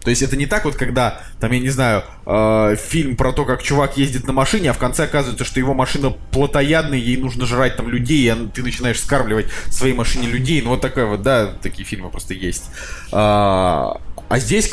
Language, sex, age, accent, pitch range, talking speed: Russian, male, 20-39, native, 110-140 Hz, 210 wpm